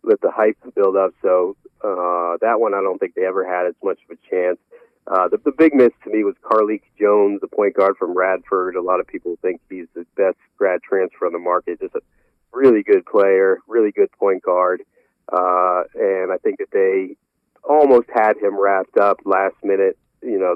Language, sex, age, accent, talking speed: English, male, 40-59, American, 210 wpm